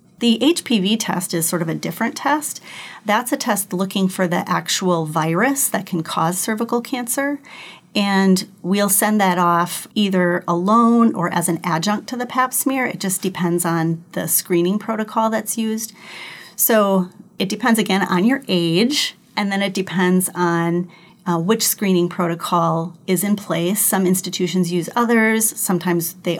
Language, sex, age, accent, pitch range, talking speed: English, female, 40-59, American, 175-220 Hz, 160 wpm